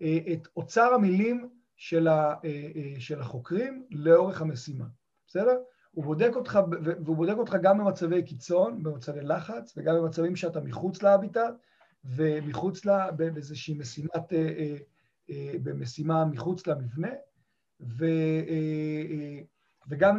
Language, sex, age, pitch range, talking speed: Hebrew, male, 50-69, 150-190 Hz, 95 wpm